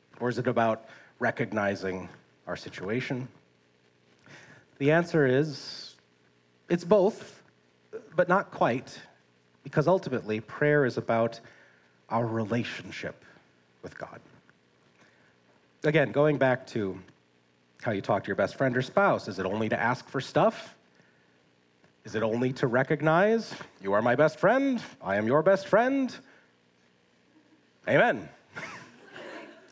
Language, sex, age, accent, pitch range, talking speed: English, male, 40-59, American, 90-145 Hz, 125 wpm